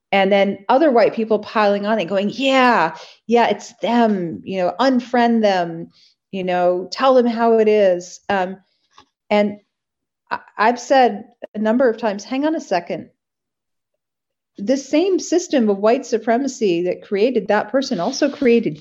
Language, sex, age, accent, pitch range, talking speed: English, female, 40-59, American, 200-245 Hz, 155 wpm